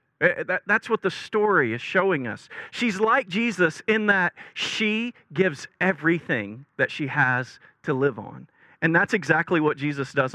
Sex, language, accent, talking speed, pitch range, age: male, English, American, 155 wpm, 155-220 Hz, 40-59